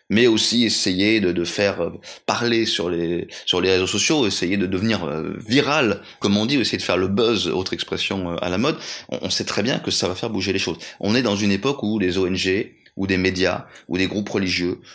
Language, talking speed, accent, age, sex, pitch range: French, 235 wpm, French, 30-49, male, 95-115 Hz